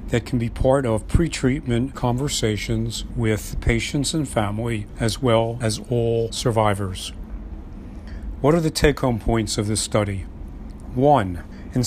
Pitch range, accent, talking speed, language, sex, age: 105-130 Hz, American, 130 wpm, English, male, 50-69